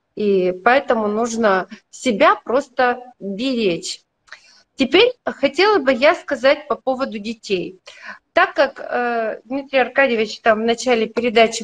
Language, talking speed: Russian, 115 wpm